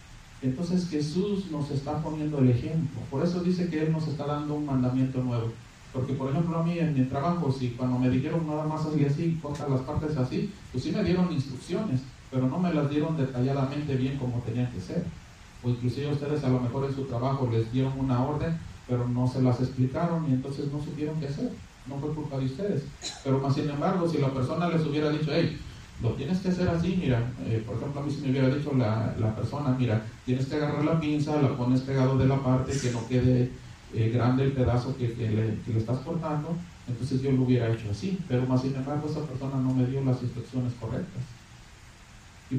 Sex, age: male, 40-59